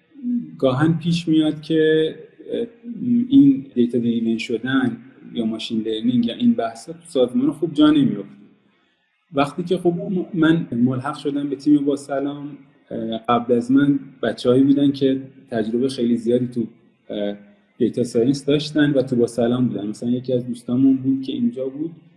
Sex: male